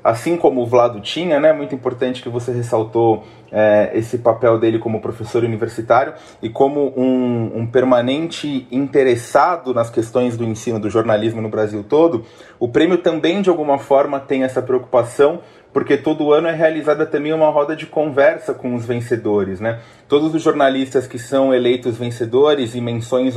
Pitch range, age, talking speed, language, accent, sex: 115-150 Hz, 30-49, 165 wpm, Portuguese, Brazilian, male